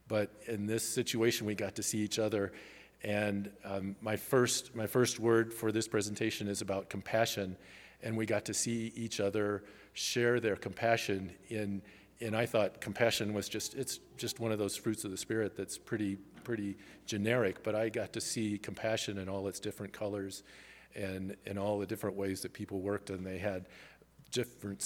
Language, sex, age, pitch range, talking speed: English, male, 40-59, 95-115 Hz, 185 wpm